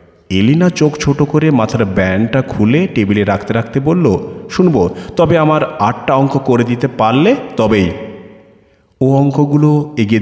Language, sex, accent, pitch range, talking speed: Bengali, male, native, 100-150 Hz, 135 wpm